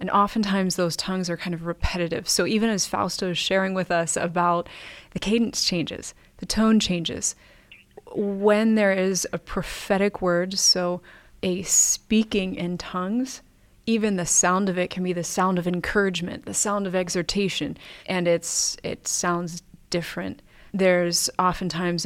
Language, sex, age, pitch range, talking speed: English, female, 20-39, 180-210 Hz, 150 wpm